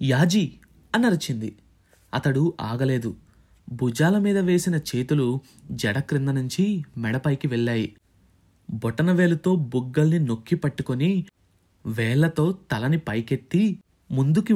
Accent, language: native, Telugu